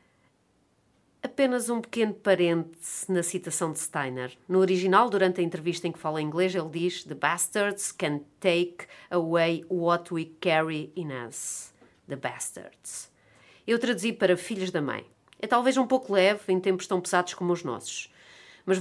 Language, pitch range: Portuguese, 155-195 Hz